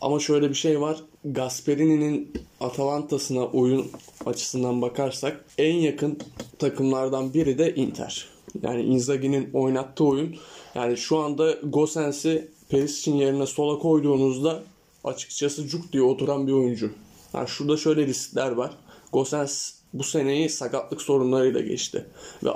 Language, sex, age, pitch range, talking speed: Turkish, male, 20-39, 135-150 Hz, 125 wpm